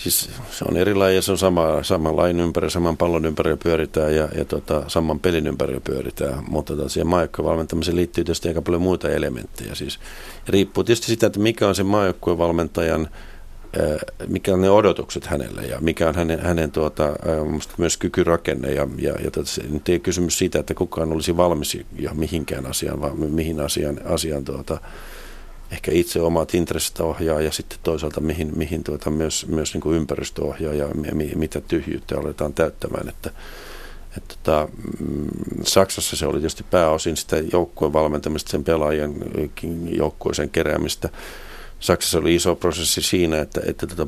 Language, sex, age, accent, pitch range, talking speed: Finnish, male, 50-69, native, 75-85 Hz, 160 wpm